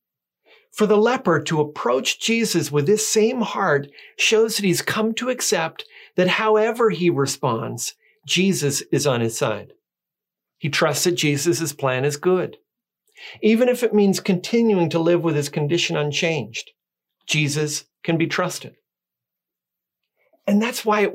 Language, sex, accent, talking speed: English, male, American, 145 wpm